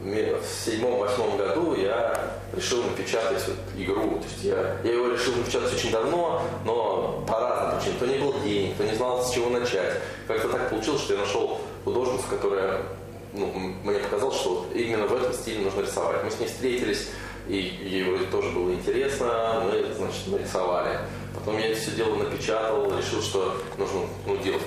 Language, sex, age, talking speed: Russian, male, 20-39, 170 wpm